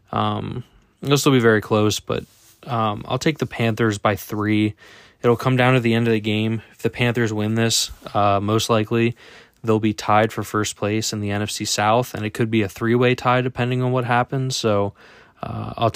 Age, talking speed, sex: 20-39, 205 wpm, male